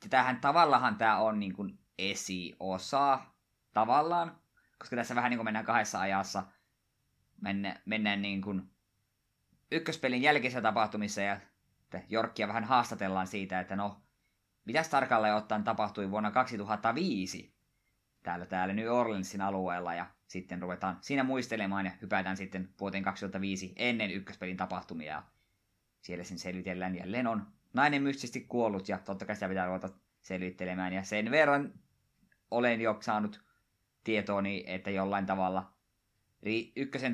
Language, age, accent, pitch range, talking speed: Finnish, 20-39, native, 95-115 Hz, 130 wpm